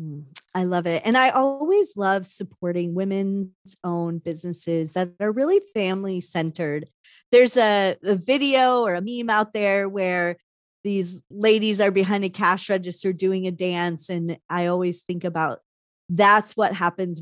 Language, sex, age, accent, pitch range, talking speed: English, female, 30-49, American, 175-220 Hz, 155 wpm